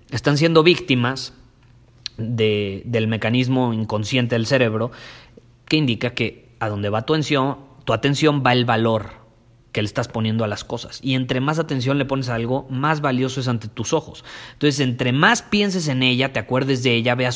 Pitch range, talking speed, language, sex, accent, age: 120-160 Hz, 185 wpm, Spanish, male, Mexican, 30-49